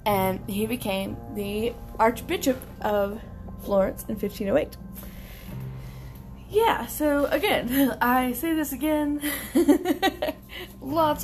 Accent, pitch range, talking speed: American, 185-240 Hz, 90 wpm